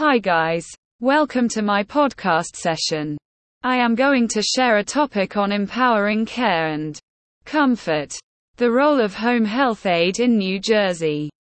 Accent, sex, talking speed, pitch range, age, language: British, female, 145 wpm, 180-250 Hz, 20-39, English